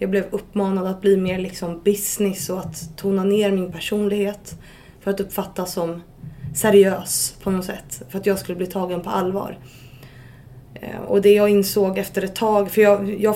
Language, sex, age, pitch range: Swedish, female, 20-39, 175-200 Hz